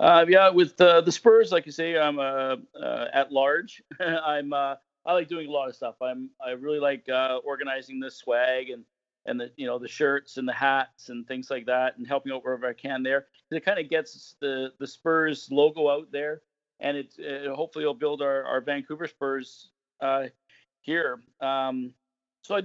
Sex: male